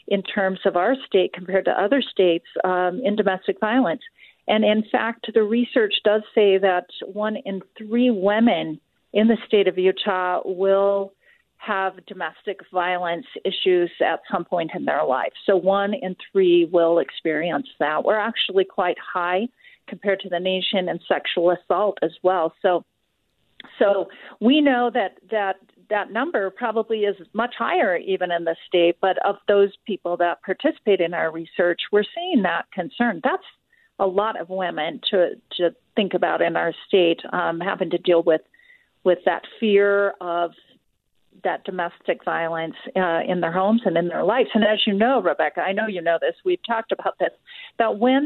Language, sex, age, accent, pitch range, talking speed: English, female, 50-69, American, 185-235 Hz, 170 wpm